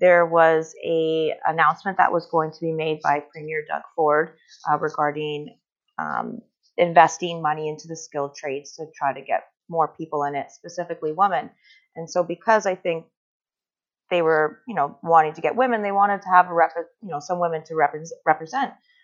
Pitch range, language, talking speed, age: 155-185 Hz, English, 185 wpm, 30-49